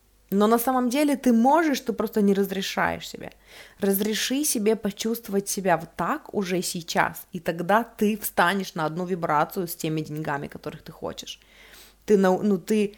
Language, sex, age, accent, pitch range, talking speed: Russian, female, 20-39, native, 170-210 Hz, 160 wpm